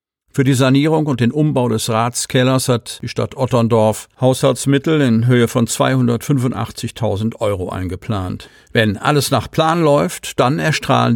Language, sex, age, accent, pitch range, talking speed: German, male, 50-69, German, 105-130 Hz, 140 wpm